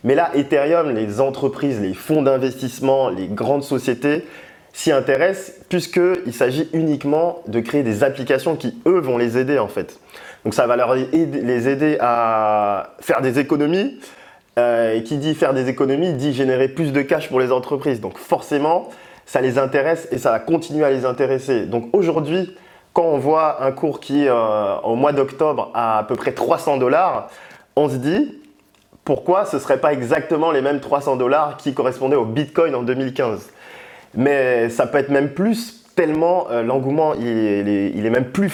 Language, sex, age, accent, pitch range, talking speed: French, male, 20-39, French, 120-155 Hz, 185 wpm